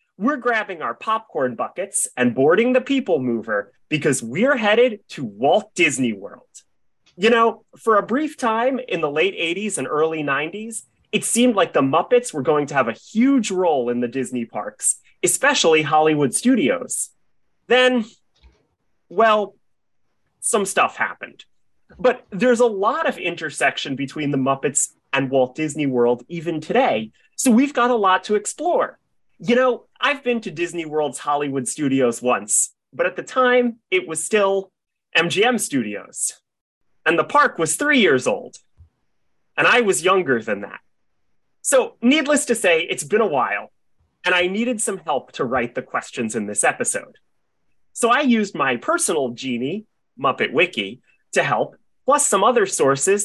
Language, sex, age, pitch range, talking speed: English, male, 30-49, 155-245 Hz, 160 wpm